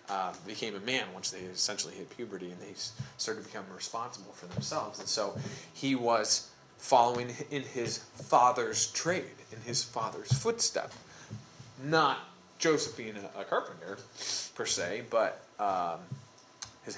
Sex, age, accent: male, 30-49, American